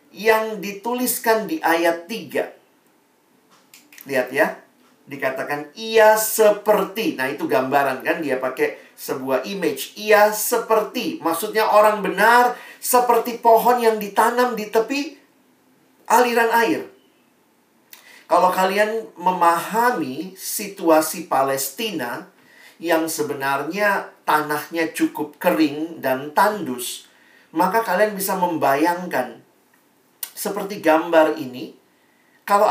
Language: Indonesian